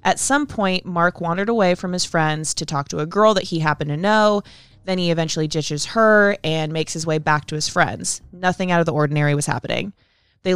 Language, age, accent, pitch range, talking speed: English, 20-39, American, 155-195 Hz, 225 wpm